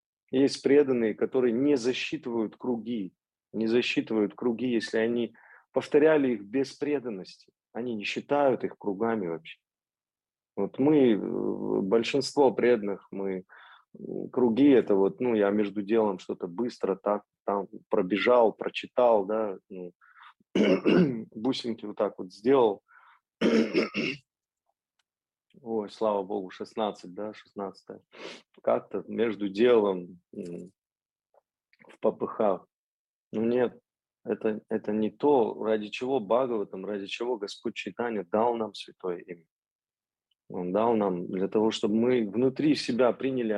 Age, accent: 30-49, native